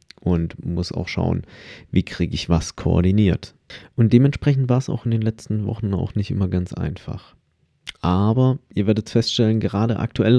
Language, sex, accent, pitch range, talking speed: German, male, German, 95-125 Hz, 170 wpm